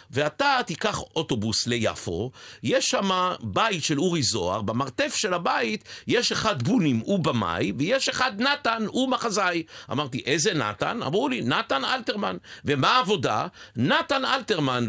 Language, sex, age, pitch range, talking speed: Hebrew, male, 50-69, 120-200 Hz, 135 wpm